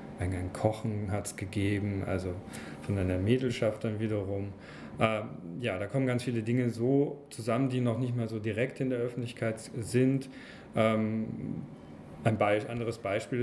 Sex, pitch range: male, 100-120 Hz